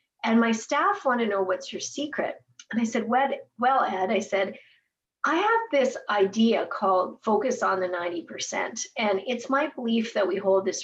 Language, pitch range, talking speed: English, 190-250 Hz, 185 wpm